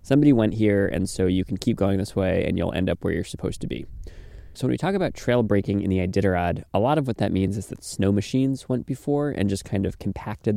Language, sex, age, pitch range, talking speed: English, male, 20-39, 95-115 Hz, 265 wpm